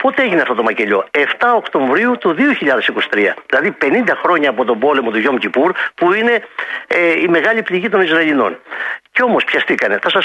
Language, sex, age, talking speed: Greek, male, 50-69, 175 wpm